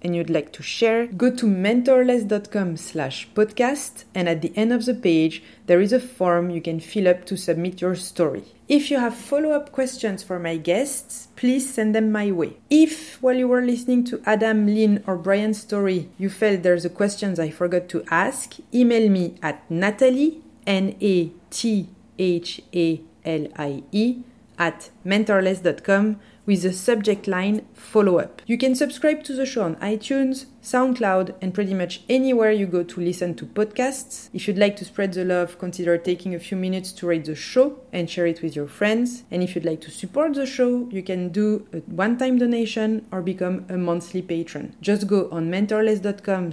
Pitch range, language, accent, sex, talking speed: 180-240 Hz, English, French, female, 175 wpm